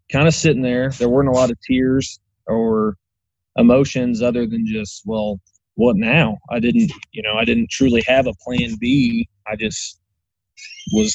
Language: English